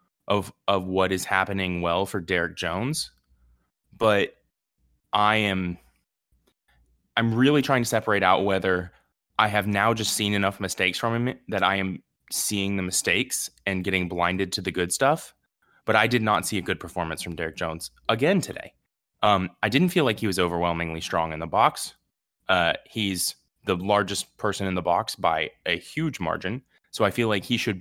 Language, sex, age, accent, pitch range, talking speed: English, male, 20-39, American, 95-120 Hz, 180 wpm